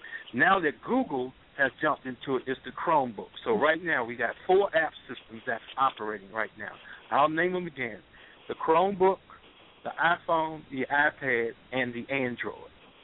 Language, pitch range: English, 125-170 Hz